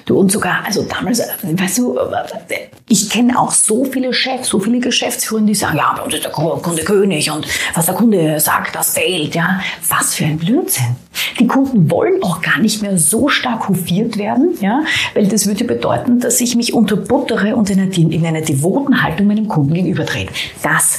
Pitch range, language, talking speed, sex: 180-245 Hz, German, 190 wpm, female